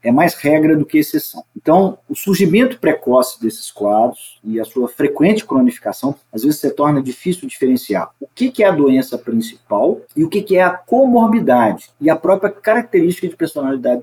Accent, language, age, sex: Brazilian, Portuguese, 40-59, male